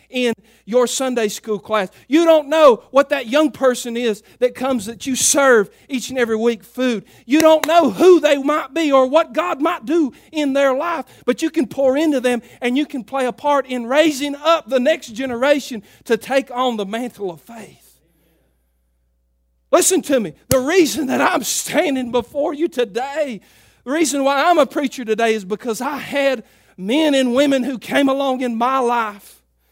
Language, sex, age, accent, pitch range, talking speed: English, male, 40-59, American, 215-275 Hz, 190 wpm